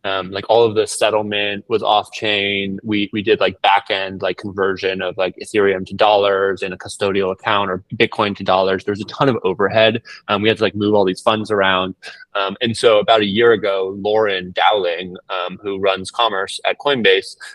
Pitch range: 95-115 Hz